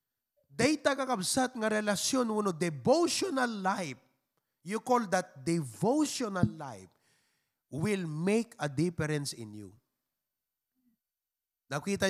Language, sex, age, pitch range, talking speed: English, male, 30-49, 135-210 Hz, 100 wpm